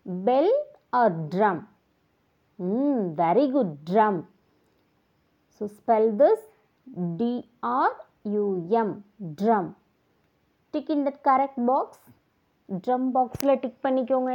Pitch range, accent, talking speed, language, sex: 205-290 Hz, Indian, 110 wpm, English, female